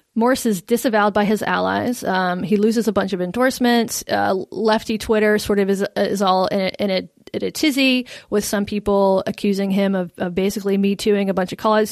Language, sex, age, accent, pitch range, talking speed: English, female, 30-49, American, 195-235 Hz, 210 wpm